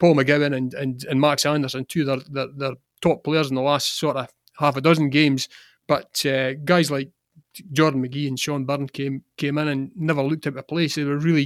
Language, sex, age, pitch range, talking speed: English, male, 30-49, 135-150 Hz, 220 wpm